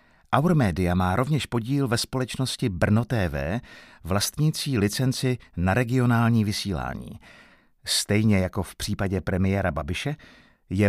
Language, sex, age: Czech, male, 50-69